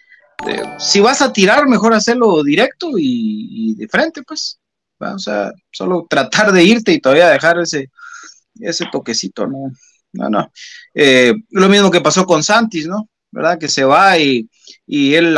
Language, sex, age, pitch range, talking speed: Spanish, male, 30-49, 160-250 Hz, 170 wpm